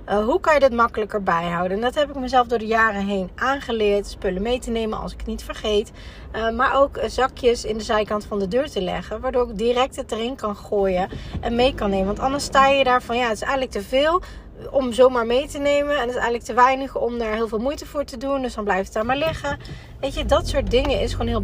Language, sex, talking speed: Dutch, female, 265 wpm